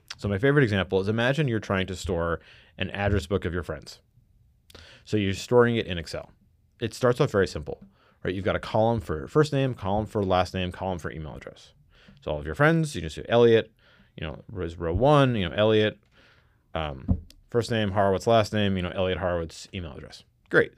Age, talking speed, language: 30-49, 210 wpm, English